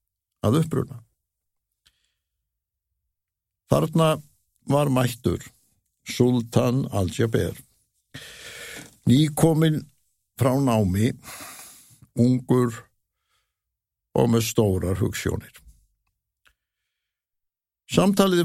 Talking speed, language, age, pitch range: 50 wpm, English, 60-79, 105-135 Hz